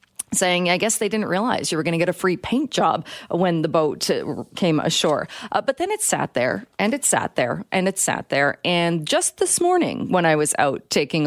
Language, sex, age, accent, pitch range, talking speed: English, female, 30-49, American, 160-215 Hz, 230 wpm